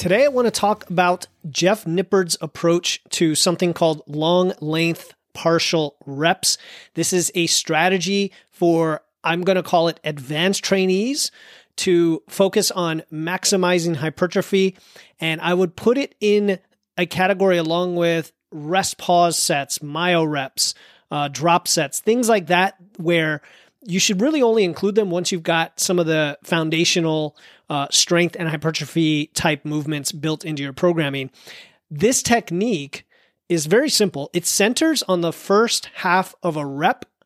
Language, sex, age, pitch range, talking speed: English, male, 30-49, 155-190 Hz, 150 wpm